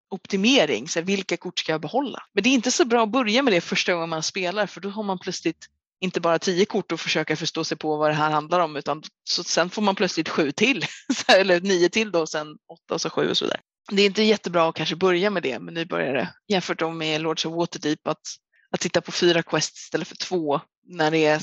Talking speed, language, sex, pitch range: 260 wpm, English, female, 165-205 Hz